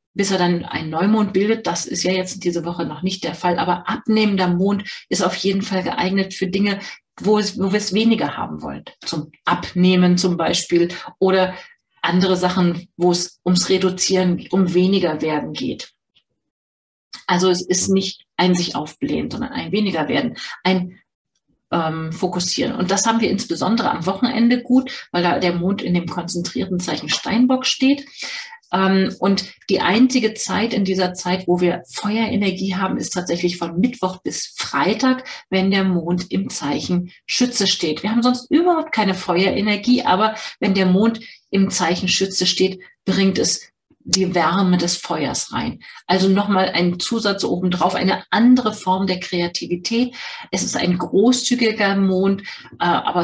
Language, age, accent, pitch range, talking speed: German, 40-59, German, 180-215 Hz, 160 wpm